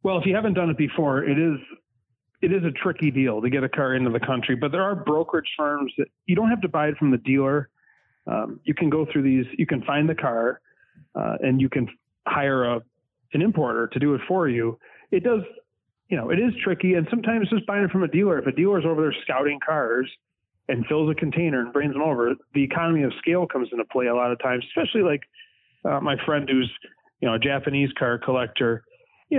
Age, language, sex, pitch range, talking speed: 30-49, English, male, 130-165 Hz, 235 wpm